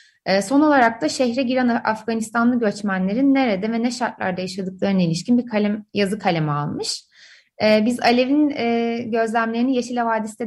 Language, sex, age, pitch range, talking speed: Turkish, female, 30-49, 195-265 Hz, 130 wpm